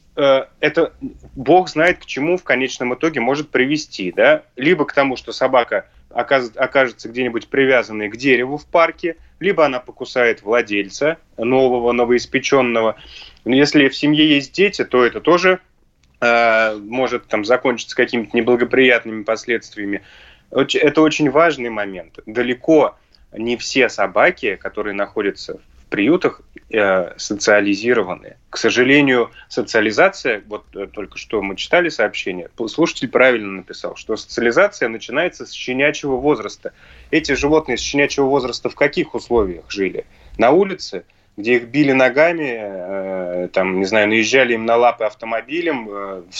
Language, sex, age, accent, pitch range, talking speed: Russian, male, 20-39, native, 110-145 Hz, 130 wpm